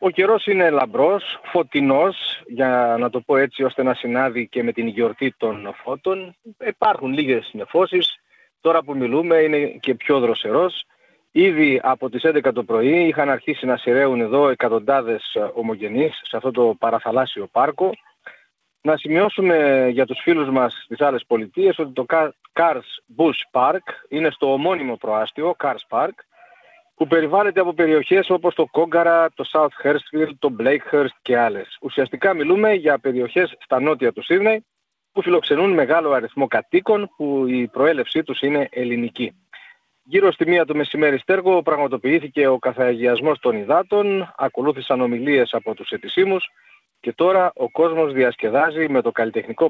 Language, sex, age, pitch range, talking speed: Greek, male, 40-59, 130-180 Hz, 150 wpm